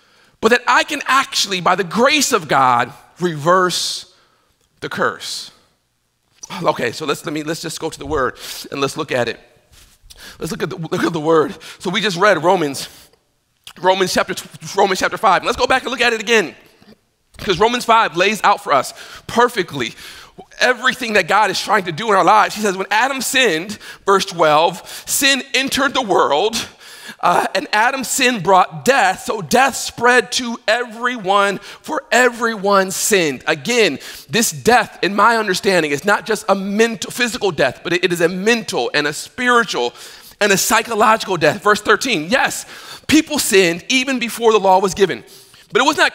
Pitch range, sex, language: 180-235 Hz, male, English